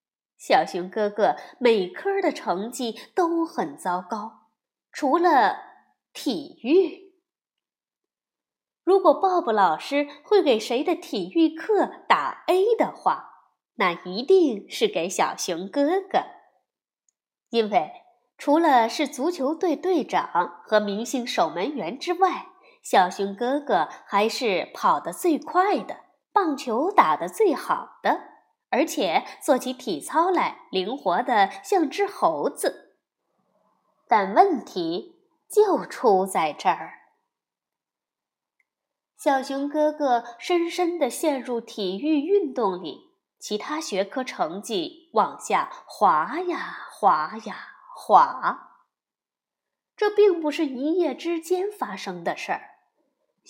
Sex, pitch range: female, 230-365 Hz